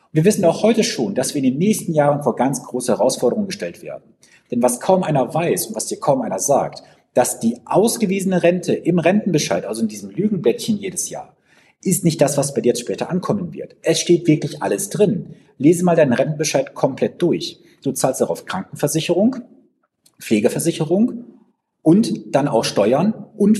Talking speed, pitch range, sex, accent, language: 180 wpm, 150-210 Hz, male, German, German